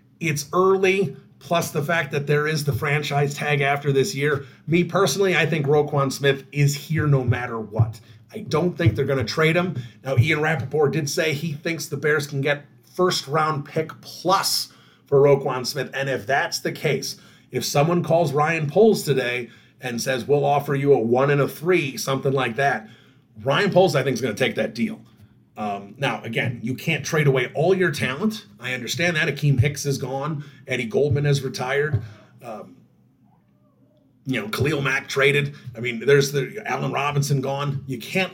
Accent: American